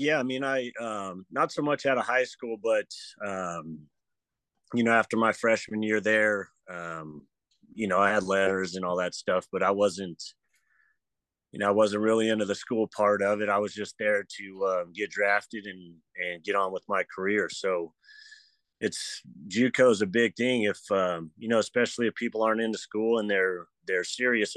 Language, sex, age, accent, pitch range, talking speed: English, male, 30-49, American, 95-125 Hz, 200 wpm